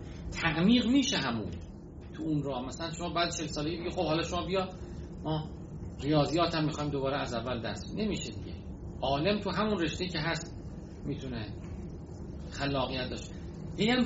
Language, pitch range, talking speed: Persian, 120-175 Hz, 155 wpm